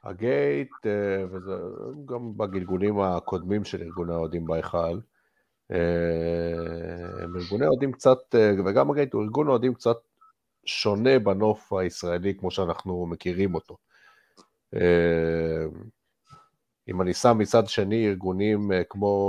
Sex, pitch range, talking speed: male, 85-110 Hz, 95 wpm